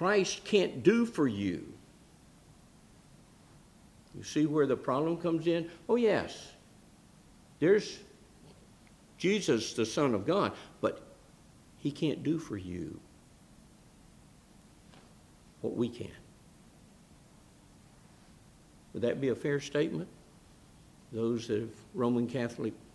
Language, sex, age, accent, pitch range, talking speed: English, male, 60-79, American, 115-170 Hz, 105 wpm